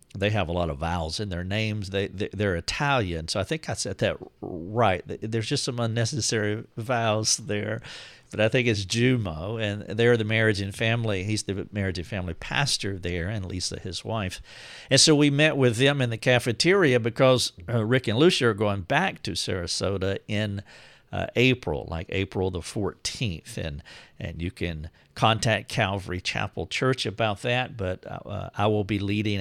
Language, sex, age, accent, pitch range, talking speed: English, male, 50-69, American, 95-120 Hz, 185 wpm